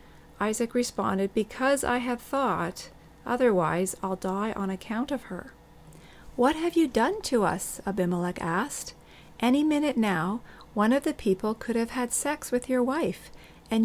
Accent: American